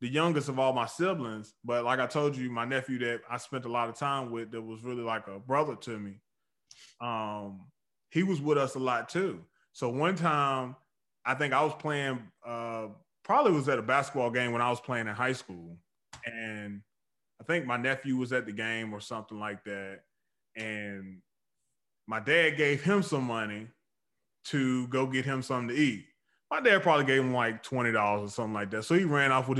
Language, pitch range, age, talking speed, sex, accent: English, 115-145 Hz, 20-39, 205 wpm, male, American